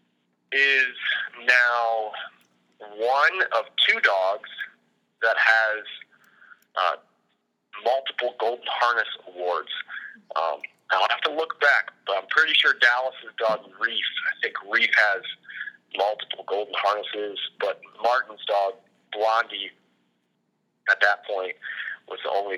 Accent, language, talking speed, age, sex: American, English, 115 wpm, 40-59, male